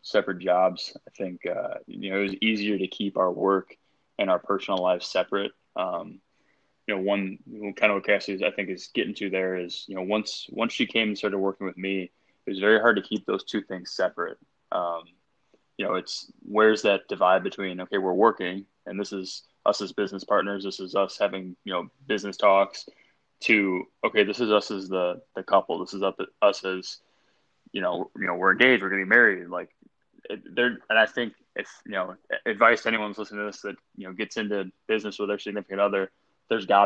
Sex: male